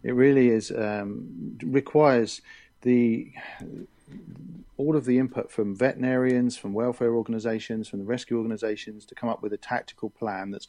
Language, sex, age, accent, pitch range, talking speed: English, male, 40-59, British, 105-125 Hz, 150 wpm